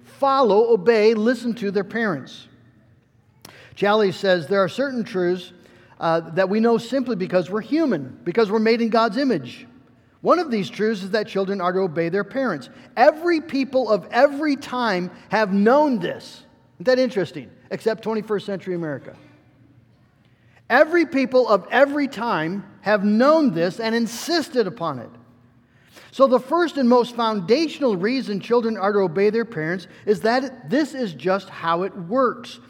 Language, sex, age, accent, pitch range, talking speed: English, male, 50-69, American, 185-245 Hz, 160 wpm